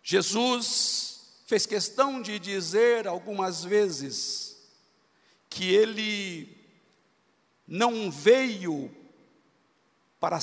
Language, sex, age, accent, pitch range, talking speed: Portuguese, male, 50-69, Brazilian, 190-265 Hz, 70 wpm